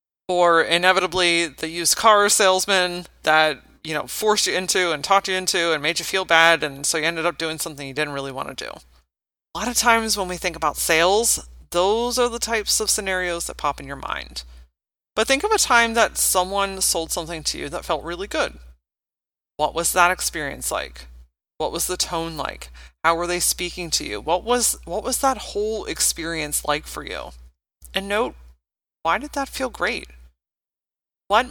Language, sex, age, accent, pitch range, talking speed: English, female, 30-49, American, 150-210 Hz, 195 wpm